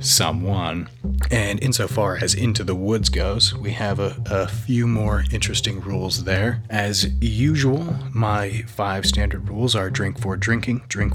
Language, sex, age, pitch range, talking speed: English, male, 30-49, 100-115 Hz, 150 wpm